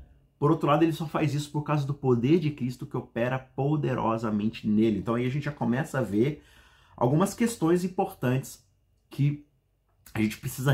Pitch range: 110-150 Hz